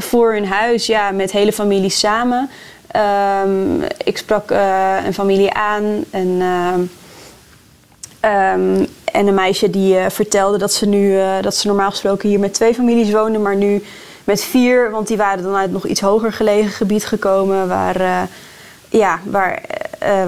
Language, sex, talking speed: Dutch, female, 170 wpm